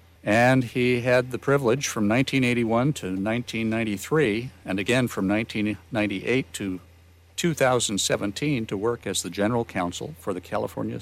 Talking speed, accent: 130 wpm, American